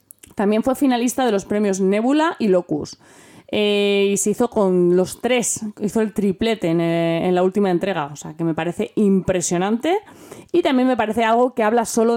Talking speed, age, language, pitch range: 190 wpm, 20-39, Spanish, 170-225 Hz